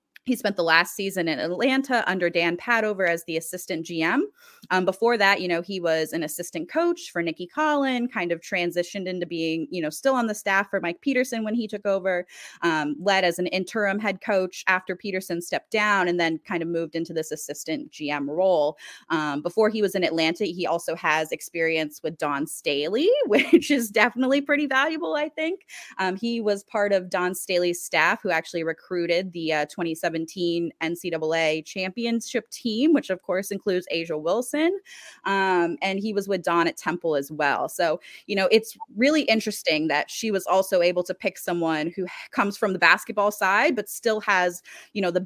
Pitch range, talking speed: 165-215 Hz, 195 wpm